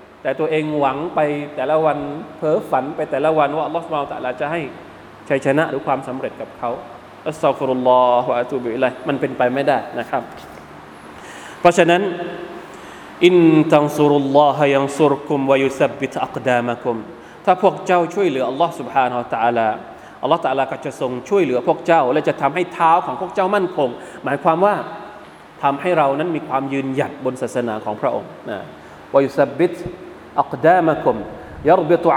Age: 20-39